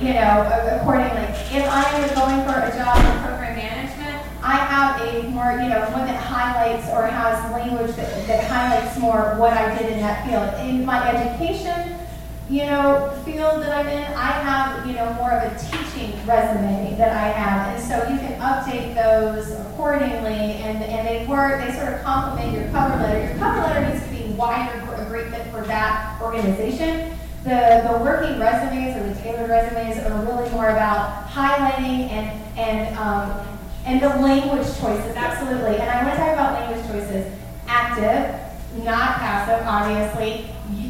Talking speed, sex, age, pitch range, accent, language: 180 wpm, female, 30-49, 220-275 Hz, American, English